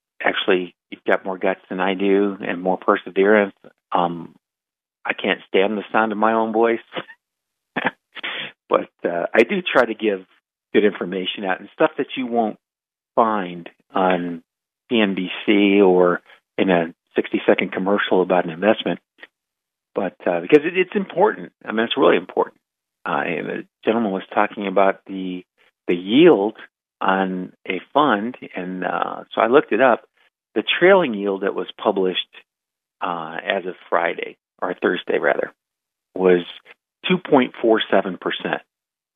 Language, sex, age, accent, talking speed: English, male, 50-69, American, 140 wpm